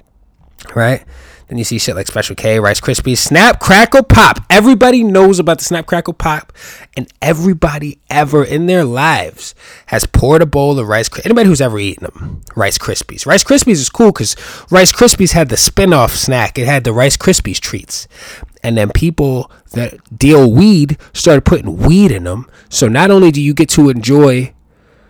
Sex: male